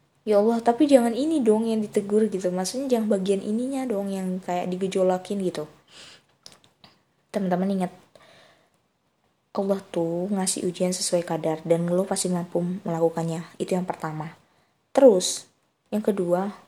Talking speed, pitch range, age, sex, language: 135 wpm, 180-225 Hz, 20-39, female, Indonesian